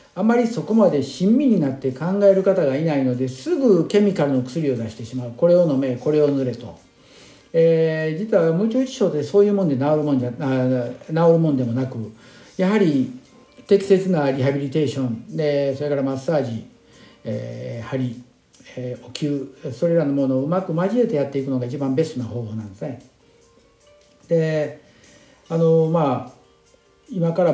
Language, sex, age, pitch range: Japanese, male, 50-69, 130-185 Hz